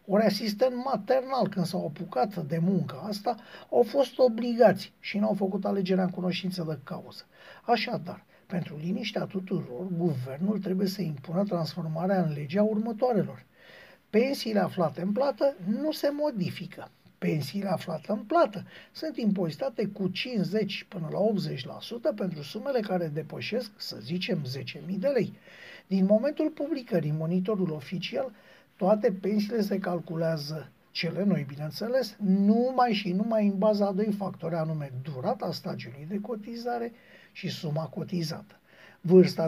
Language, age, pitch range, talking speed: Romanian, 60-79, 170-220 Hz, 135 wpm